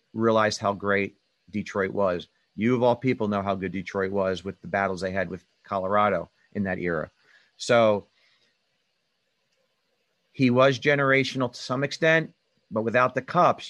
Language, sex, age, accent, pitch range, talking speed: English, male, 40-59, American, 105-120 Hz, 155 wpm